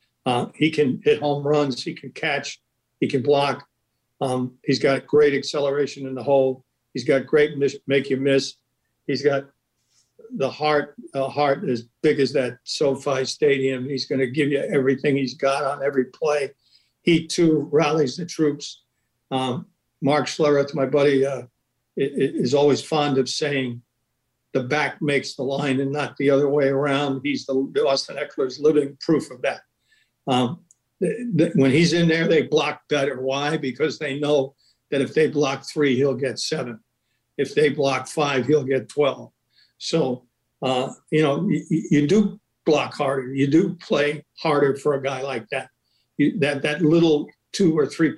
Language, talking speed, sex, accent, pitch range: English, 175 wpm, male, American, 135-150 Hz